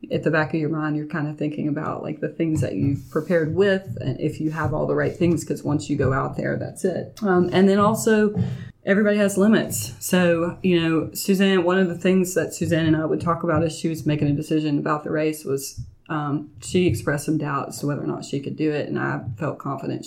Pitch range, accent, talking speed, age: 150-175 Hz, American, 250 wpm, 20-39